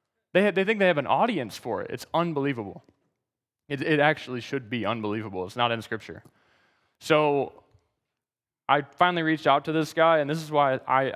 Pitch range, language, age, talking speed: 125-165 Hz, English, 20-39, 190 wpm